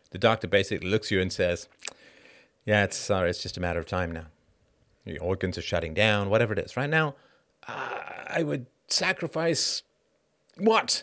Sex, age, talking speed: male, 40-59, 180 wpm